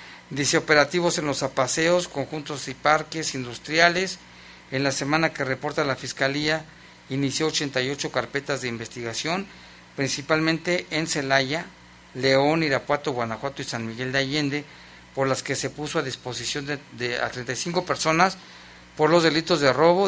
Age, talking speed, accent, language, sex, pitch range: 50-69, 145 wpm, Mexican, Spanish, male, 125-155 Hz